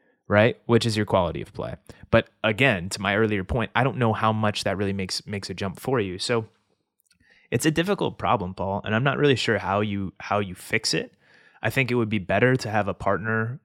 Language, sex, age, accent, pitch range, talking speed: English, male, 20-39, American, 95-115 Hz, 235 wpm